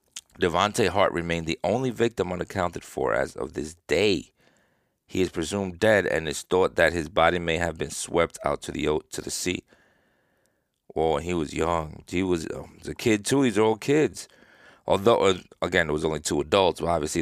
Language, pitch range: English, 80-100 Hz